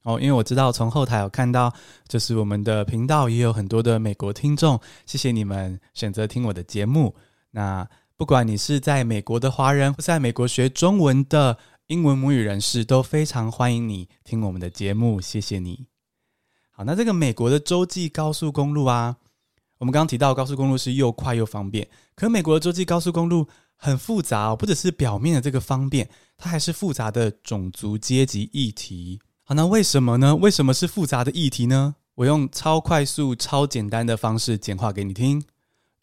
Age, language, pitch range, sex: 20-39, Chinese, 110-150 Hz, male